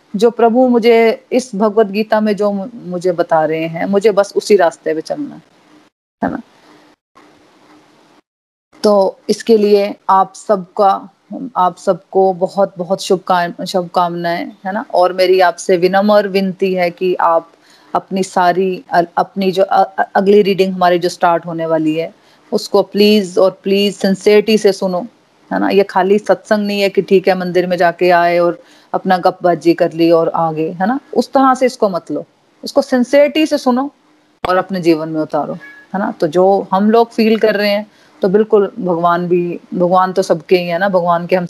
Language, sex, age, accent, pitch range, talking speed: Hindi, female, 30-49, native, 180-215 Hz, 175 wpm